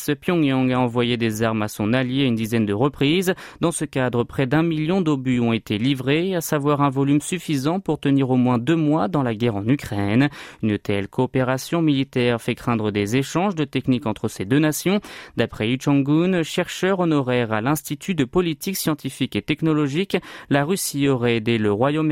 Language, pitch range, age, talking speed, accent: French, 120-155 Hz, 30-49, 190 wpm, French